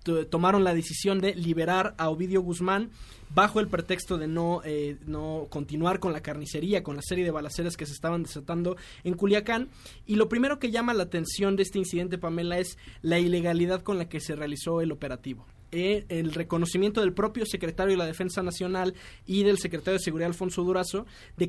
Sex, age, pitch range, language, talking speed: male, 20-39, 165-200 Hz, Spanish, 195 wpm